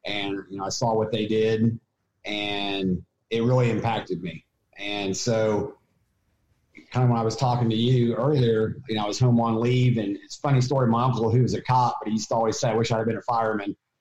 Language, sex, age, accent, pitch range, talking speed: English, male, 40-59, American, 110-125 Hz, 235 wpm